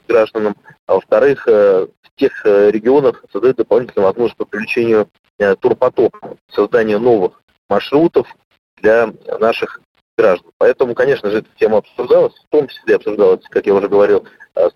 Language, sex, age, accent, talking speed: Russian, male, 30-49, native, 135 wpm